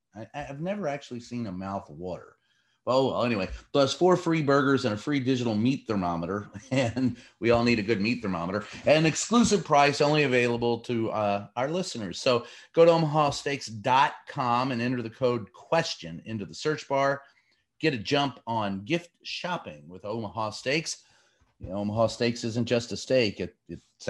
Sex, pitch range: male, 110-145 Hz